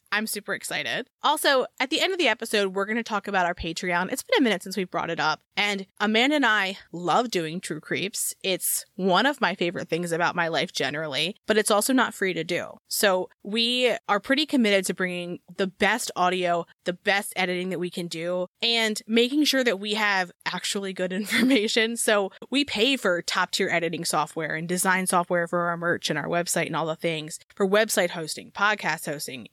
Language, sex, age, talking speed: English, female, 20-39, 205 wpm